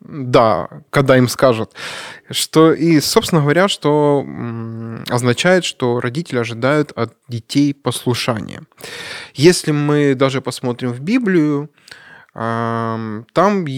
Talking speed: 95 wpm